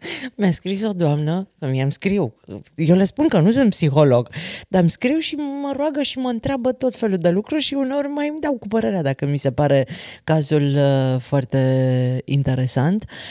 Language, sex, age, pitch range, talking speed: Romanian, female, 30-49, 135-195 Hz, 185 wpm